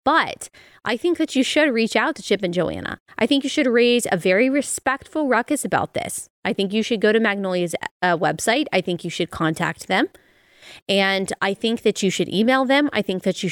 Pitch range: 190-265 Hz